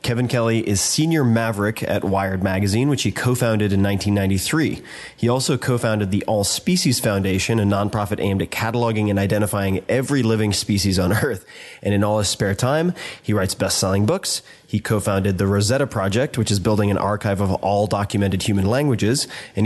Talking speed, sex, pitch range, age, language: 175 wpm, male, 100-115 Hz, 20-39, English